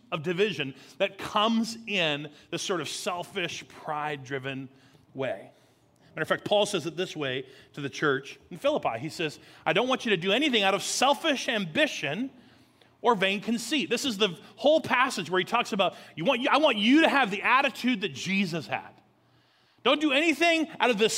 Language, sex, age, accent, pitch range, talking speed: English, male, 30-49, American, 160-250 Hz, 195 wpm